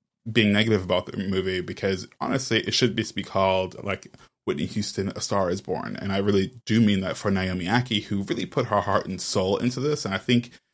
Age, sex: 20-39, male